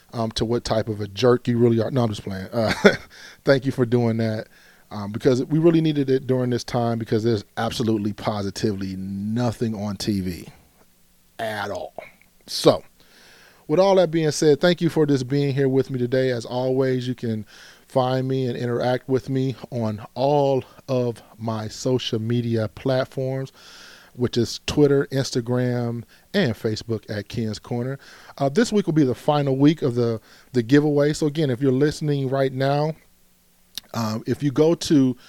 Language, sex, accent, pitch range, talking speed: English, male, American, 115-140 Hz, 175 wpm